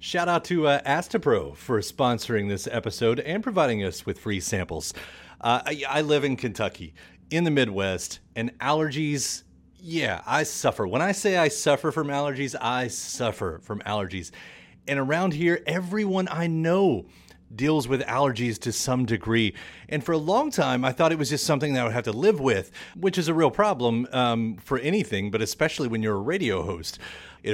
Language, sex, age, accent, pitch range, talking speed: English, male, 30-49, American, 115-165 Hz, 185 wpm